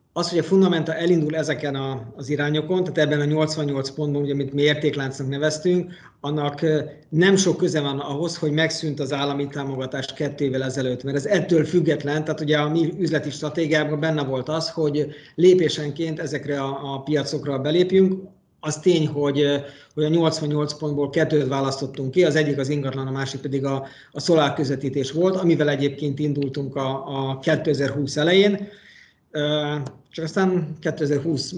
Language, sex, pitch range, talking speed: Hungarian, male, 145-165 Hz, 150 wpm